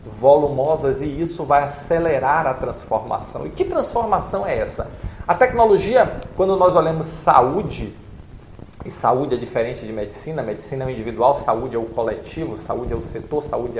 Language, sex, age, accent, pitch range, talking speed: Portuguese, male, 40-59, Brazilian, 140-215 Hz, 160 wpm